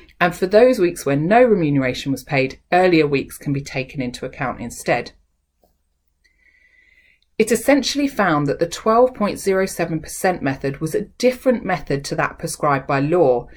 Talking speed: 145 wpm